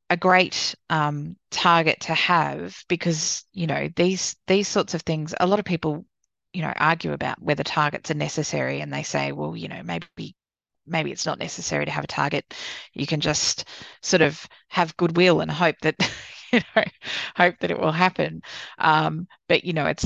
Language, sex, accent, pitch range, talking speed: English, female, Australian, 145-170 Hz, 190 wpm